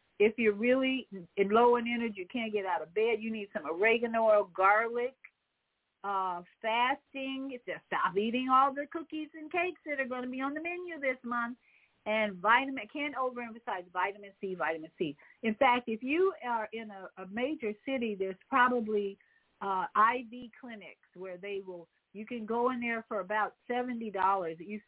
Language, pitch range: English, 185-245 Hz